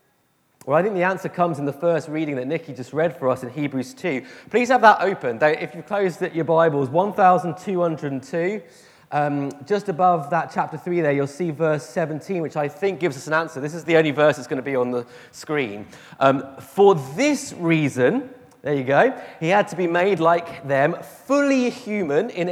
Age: 30-49